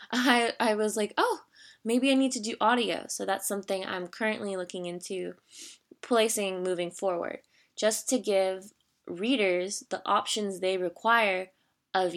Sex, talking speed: female, 150 wpm